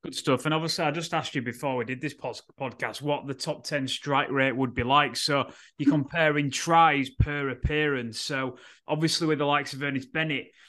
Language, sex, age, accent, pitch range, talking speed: English, male, 20-39, British, 135-155 Hz, 200 wpm